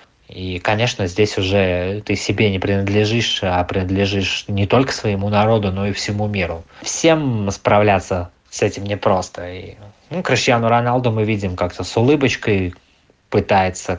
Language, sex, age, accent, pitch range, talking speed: Russian, male, 20-39, native, 95-105 Hz, 135 wpm